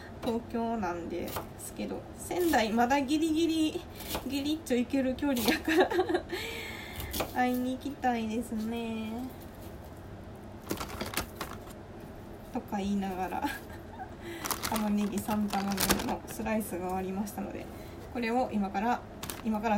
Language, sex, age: Japanese, female, 20-39